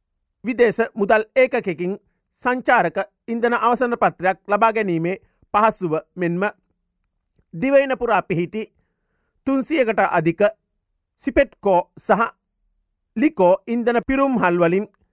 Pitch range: 175-240 Hz